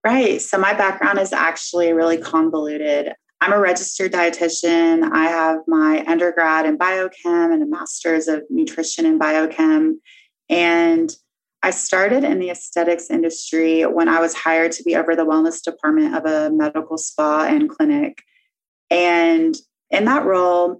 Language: English